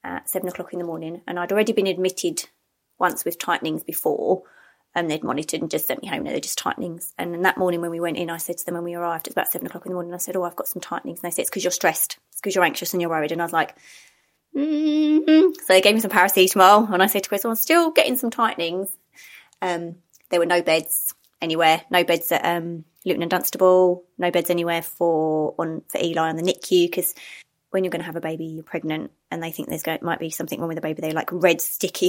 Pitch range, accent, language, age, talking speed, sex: 170-190 Hz, British, English, 20-39, 260 wpm, female